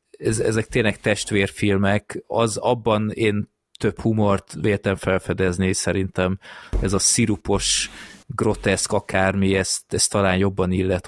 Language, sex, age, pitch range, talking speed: Hungarian, male, 20-39, 95-110 Hz, 110 wpm